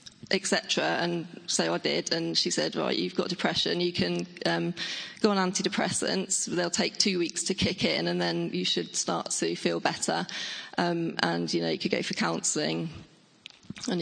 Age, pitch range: 20-39, 175-195 Hz